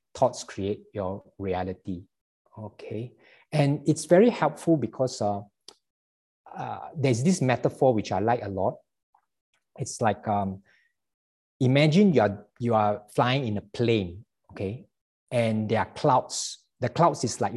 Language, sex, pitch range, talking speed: English, male, 110-150 Hz, 140 wpm